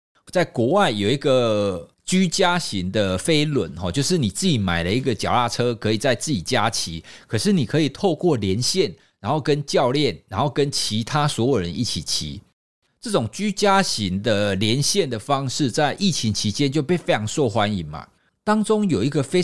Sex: male